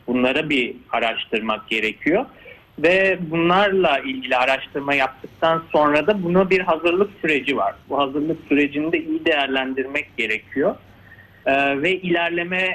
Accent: native